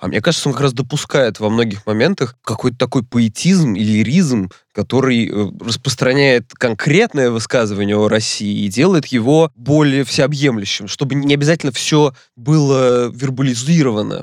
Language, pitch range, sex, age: Russian, 120-150 Hz, male, 20-39